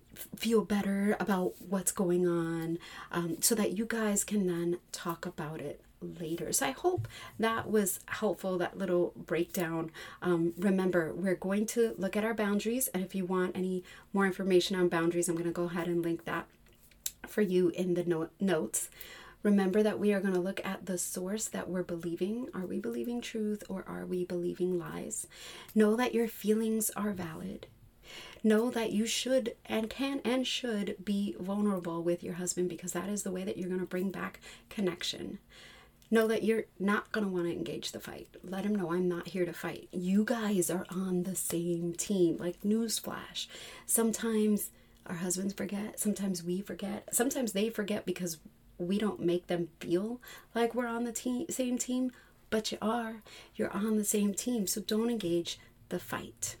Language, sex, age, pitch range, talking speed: English, female, 30-49, 175-215 Hz, 185 wpm